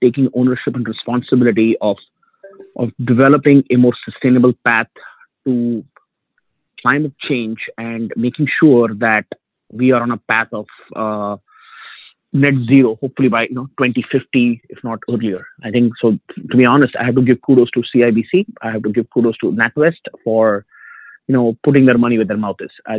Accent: Indian